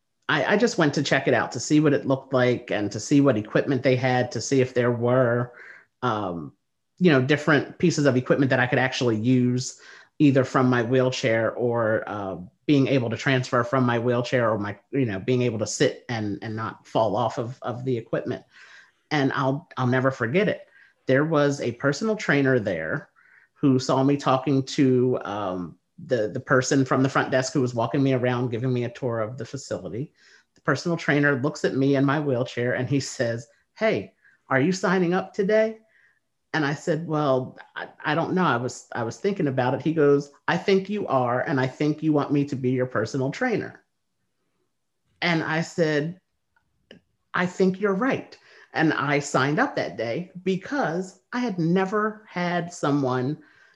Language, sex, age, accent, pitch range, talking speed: English, male, 40-59, American, 125-155 Hz, 195 wpm